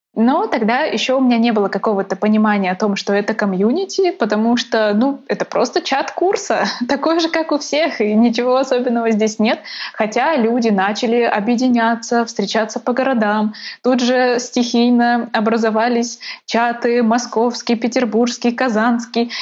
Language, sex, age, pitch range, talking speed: Russian, female, 20-39, 210-255 Hz, 140 wpm